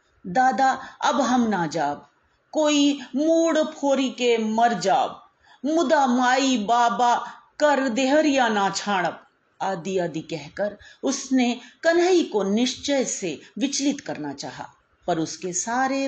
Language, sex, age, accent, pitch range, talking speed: Hindi, female, 40-59, native, 180-275 Hz, 90 wpm